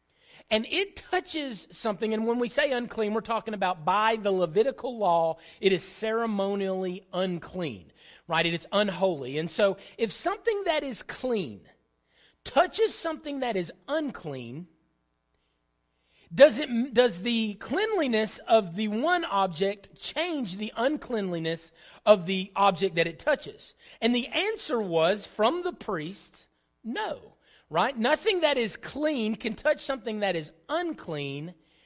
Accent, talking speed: American, 135 wpm